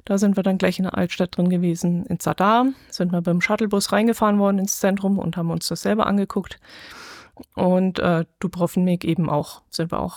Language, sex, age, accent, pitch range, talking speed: German, female, 20-39, German, 175-210 Hz, 200 wpm